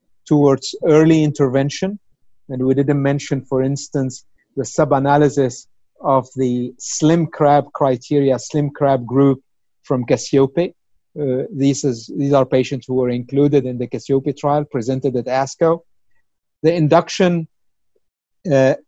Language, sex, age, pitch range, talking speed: English, male, 50-69, 130-155 Hz, 125 wpm